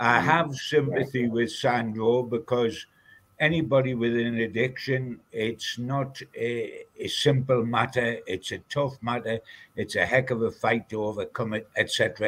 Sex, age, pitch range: male, 60-79, 120-140 Hz